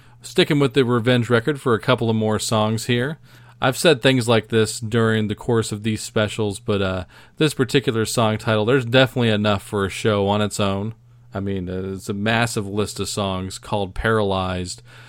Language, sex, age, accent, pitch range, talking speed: English, male, 40-59, American, 105-120 Hz, 195 wpm